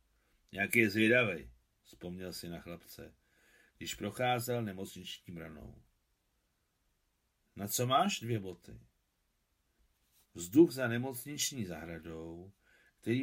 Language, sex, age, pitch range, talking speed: Czech, male, 50-69, 90-120 Hz, 95 wpm